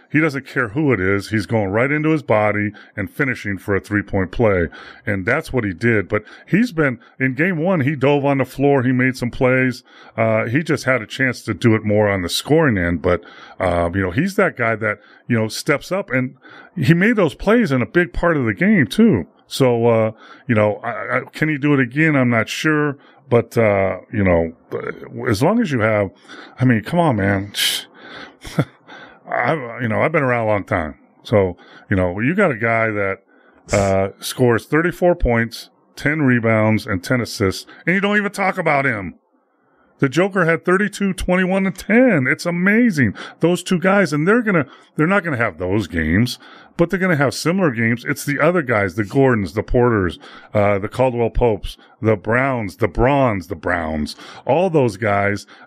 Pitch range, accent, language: 105-160 Hz, American, English